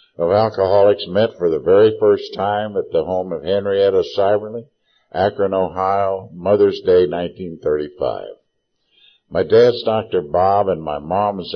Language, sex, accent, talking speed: English, male, American, 135 wpm